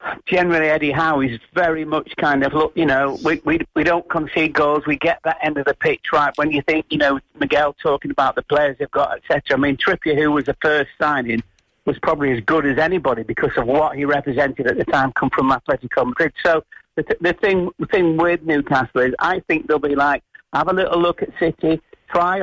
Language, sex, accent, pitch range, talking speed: English, male, British, 135-155 Hz, 230 wpm